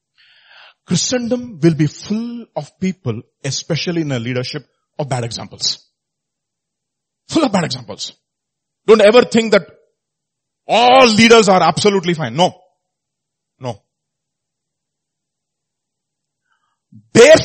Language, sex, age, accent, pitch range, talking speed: English, male, 30-49, Indian, 130-185 Hz, 100 wpm